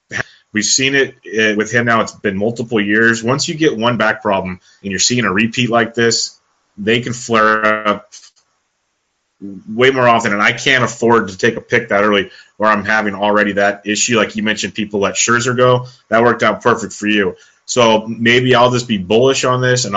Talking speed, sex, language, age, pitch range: 205 wpm, male, English, 30-49, 105-120 Hz